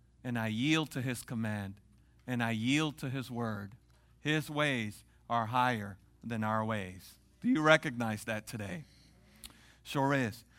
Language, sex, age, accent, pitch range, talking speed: English, male, 40-59, American, 125-170 Hz, 145 wpm